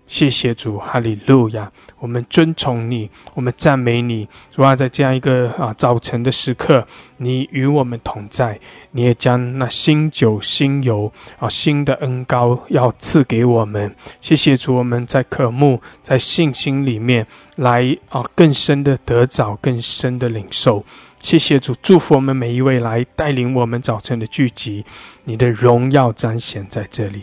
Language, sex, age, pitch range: English, male, 20-39, 115-135 Hz